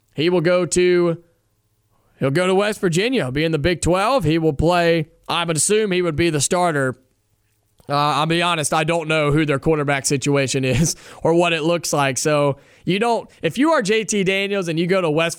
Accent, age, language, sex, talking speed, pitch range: American, 20-39, English, male, 215 wpm, 140-180 Hz